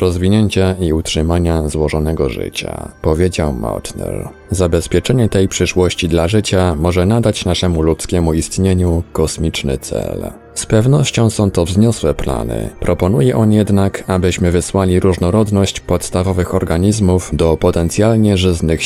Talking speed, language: 115 wpm, Polish